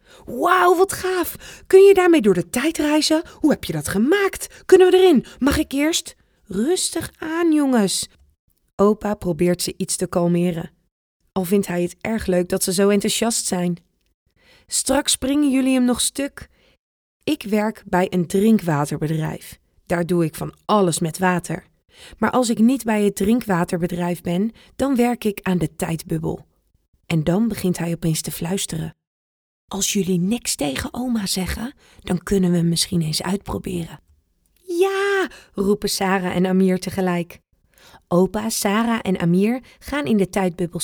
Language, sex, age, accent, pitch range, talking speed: Dutch, female, 20-39, Dutch, 175-240 Hz, 155 wpm